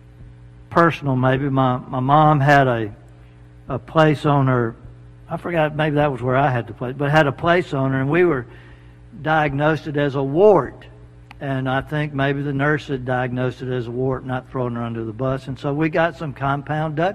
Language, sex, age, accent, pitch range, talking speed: English, male, 60-79, American, 125-165 Hz, 205 wpm